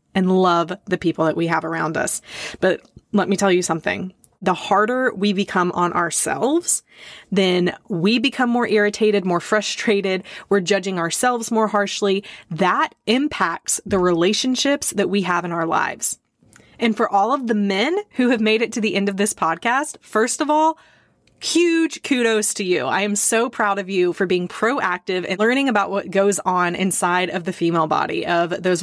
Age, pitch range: 20-39, 185-230 Hz